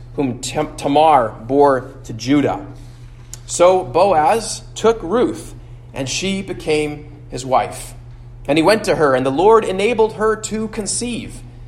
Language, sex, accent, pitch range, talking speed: English, male, American, 120-165 Hz, 135 wpm